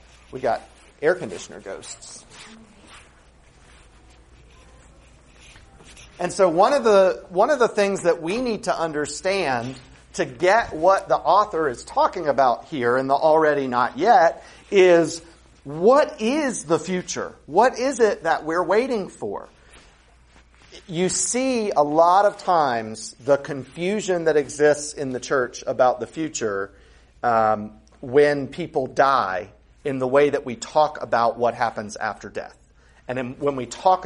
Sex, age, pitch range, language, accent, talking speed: male, 40-59, 115-195 Hz, English, American, 140 wpm